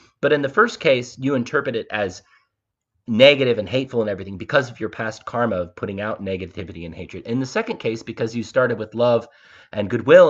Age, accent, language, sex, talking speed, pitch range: 30-49, American, English, male, 210 wpm, 100-135 Hz